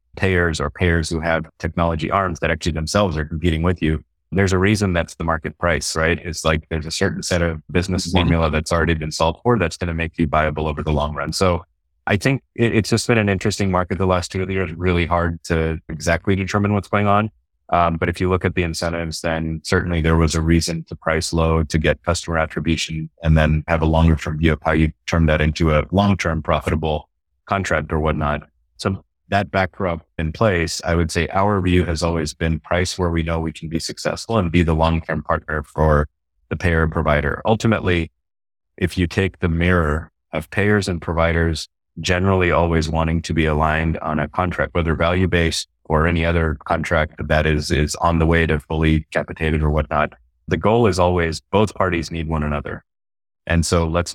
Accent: American